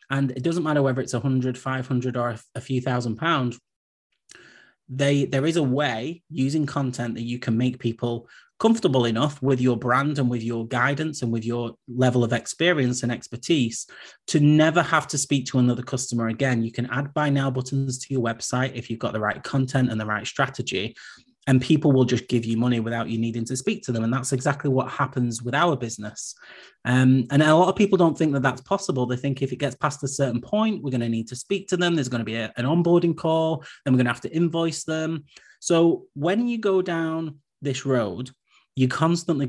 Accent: British